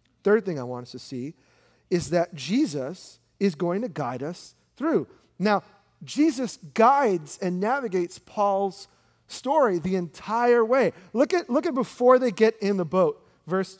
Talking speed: 160 wpm